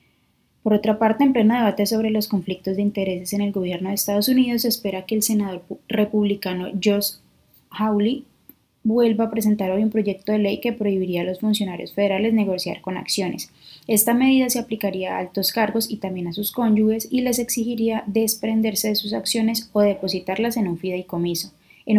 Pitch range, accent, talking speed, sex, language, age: 195-220 Hz, Colombian, 185 wpm, female, Spanish, 20-39